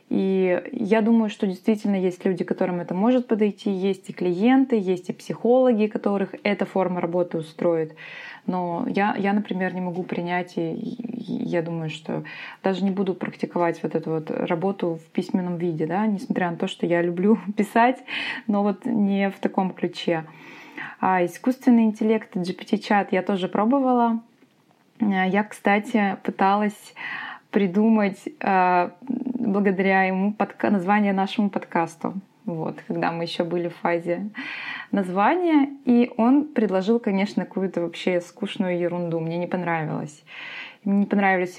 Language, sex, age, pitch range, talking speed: Russian, female, 20-39, 185-230 Hz, 140 wpm